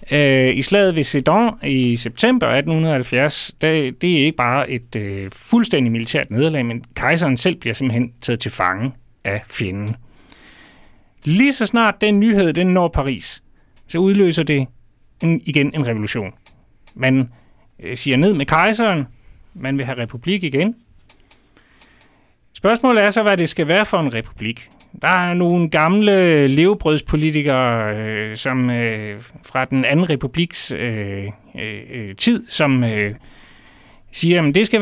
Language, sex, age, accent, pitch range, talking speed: Danish, male, 30-49, native, 120-175 Hz, 135 wpm